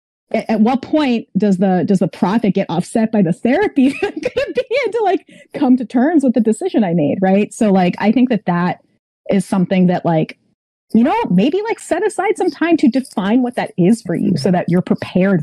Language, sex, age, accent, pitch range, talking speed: English, female, 30-49, American, 175-245 Hz, 205 wpm